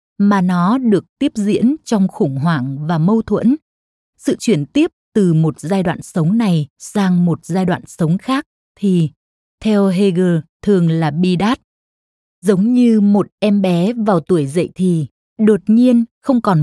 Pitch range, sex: 170-220 Hz, female